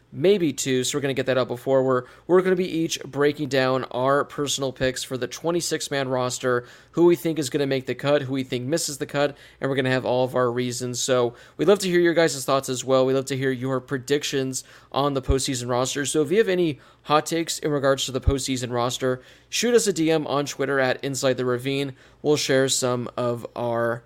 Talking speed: 235 wpm